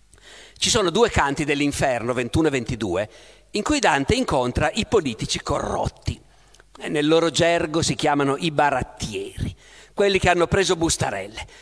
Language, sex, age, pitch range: Italian, male, 50-69, 145-200 Hz